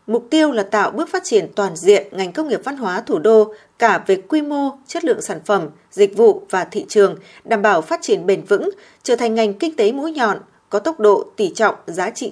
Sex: female